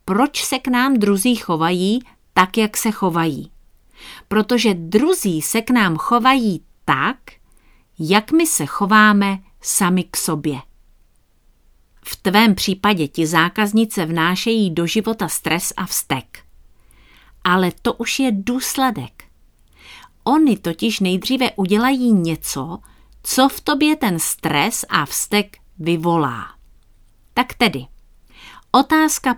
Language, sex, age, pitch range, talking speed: Czech, female, 40-59, 170-225 Hz, 115 wpm